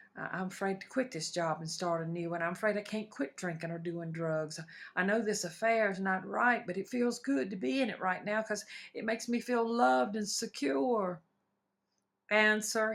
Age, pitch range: 50-69, 190-240 Hz